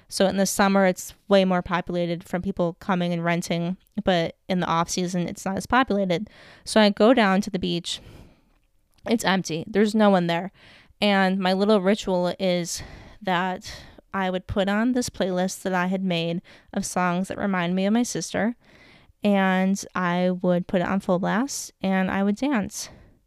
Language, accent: English, American